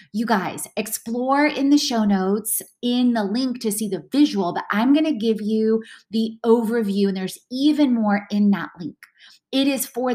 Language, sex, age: English, female, 20-39